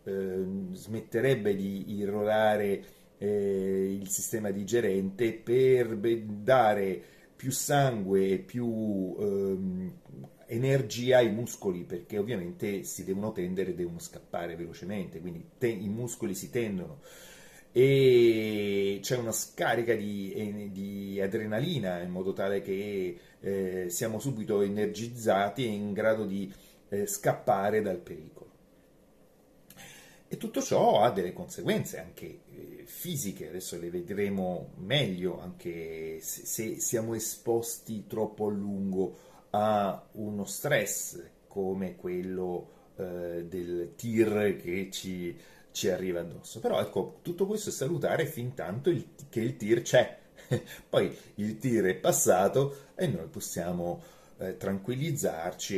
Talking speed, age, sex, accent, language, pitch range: 115 wpm, 30-49, male, native, Italian, 95-120 Hz